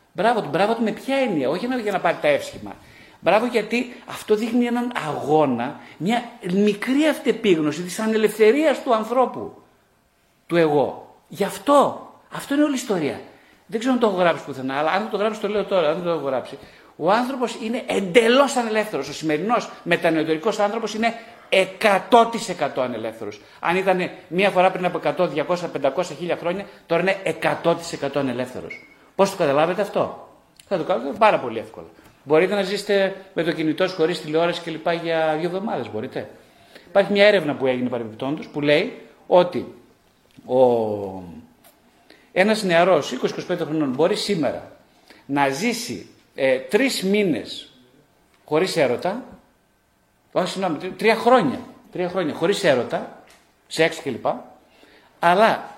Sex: male